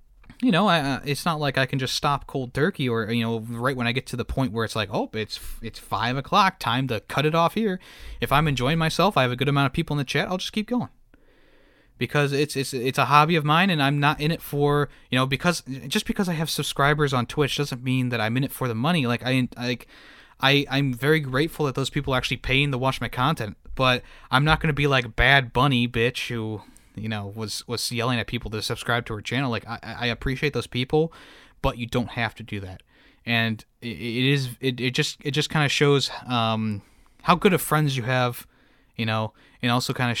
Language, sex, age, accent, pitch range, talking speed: English, male, 20-39, American, 115-145 Hz, 245 wpm